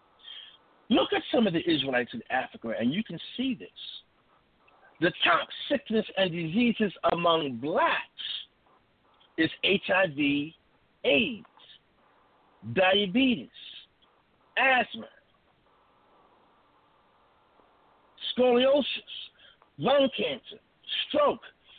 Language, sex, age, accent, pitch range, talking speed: English, male, 60-79, American, 165-250 Hz, 80 wpm